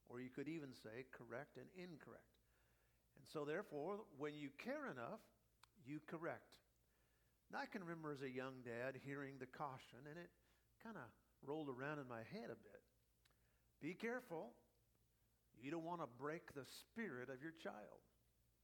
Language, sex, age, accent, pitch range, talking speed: English, male, 50-69, American, 120-155 Hz, 165 wpm